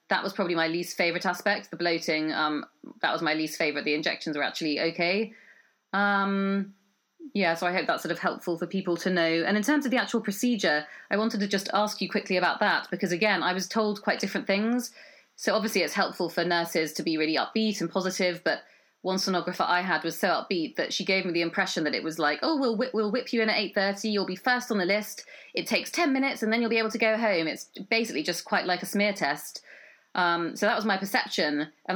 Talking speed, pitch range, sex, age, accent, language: 240 wpm, 165-205 Hz, female, 30-49, British, English